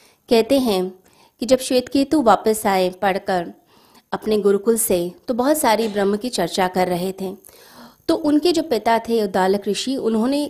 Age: 20-39